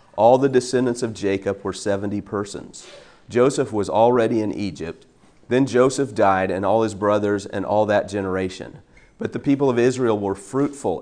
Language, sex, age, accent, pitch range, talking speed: English, male, 40-59, American, 95-120 Hz, 170 wpm